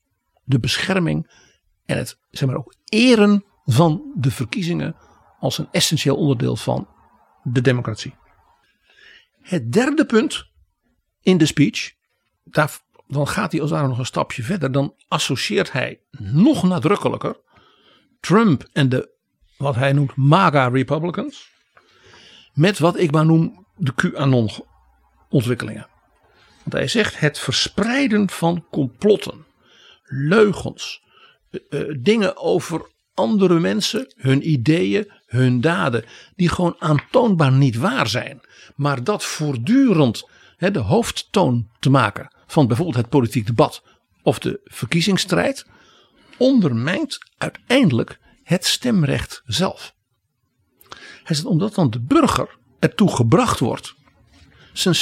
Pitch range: 130-190 Hz